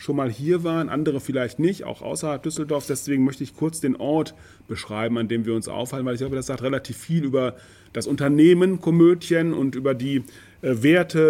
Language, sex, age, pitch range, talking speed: German, male, 30-49, 125-160 Hz, 195 wpm